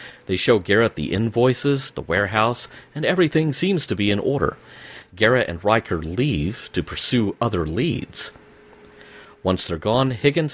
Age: 40-59